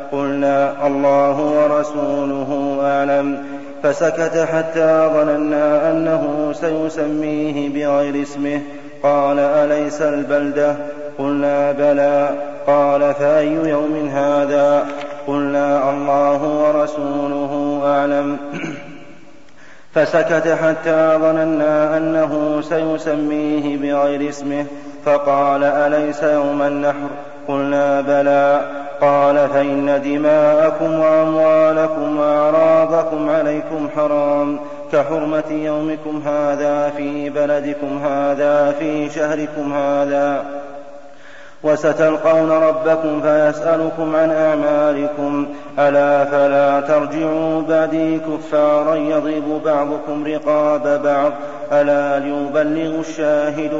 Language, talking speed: Arabic, 80 wpm